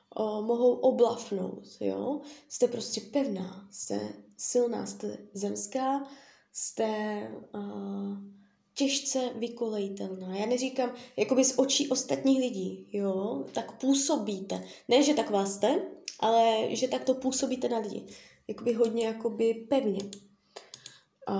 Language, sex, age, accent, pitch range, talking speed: Czech, female, 20-39, native, 200-250 Hz, 115 wpm